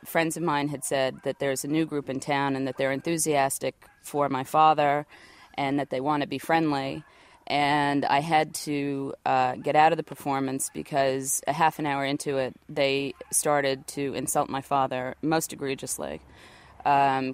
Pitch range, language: 135-150 Hz, English